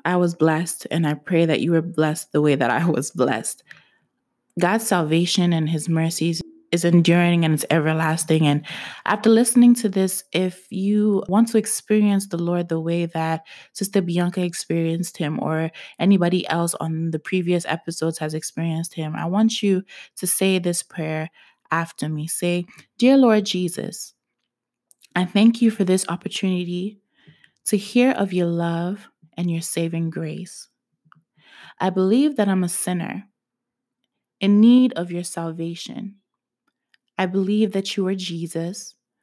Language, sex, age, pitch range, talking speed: English, female, 20-39, 165-205 Hz, 155 wpm